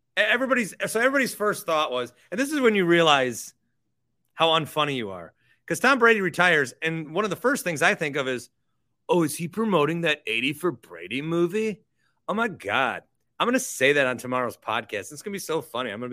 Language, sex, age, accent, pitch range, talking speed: English, male, 30-49, American, 130-205 Hz, 220 wpm